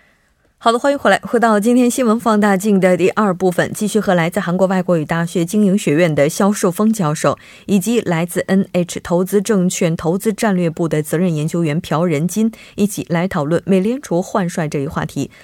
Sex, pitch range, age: female, 155-205 Hz, 20-39